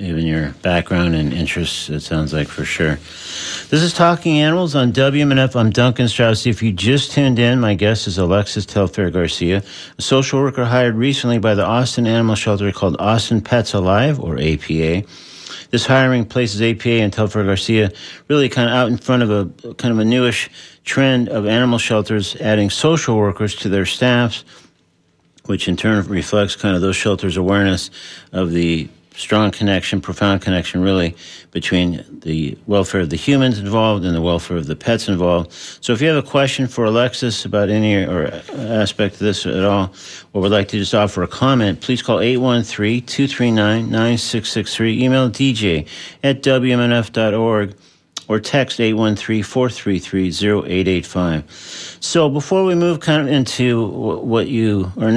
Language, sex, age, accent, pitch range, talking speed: English, male, 50-69, American, 95-125 Hz, 160 wpm